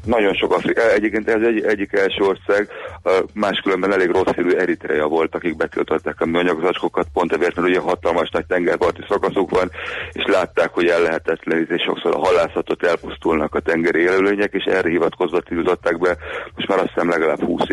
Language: Hungarian